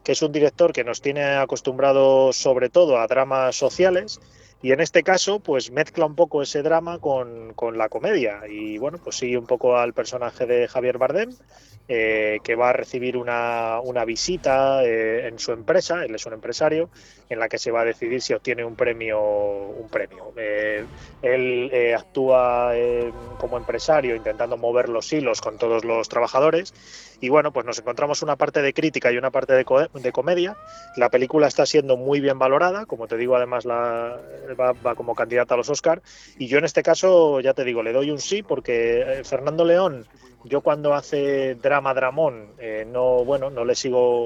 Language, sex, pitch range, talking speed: Spanish, male, 120-150 Hz, 190 wpm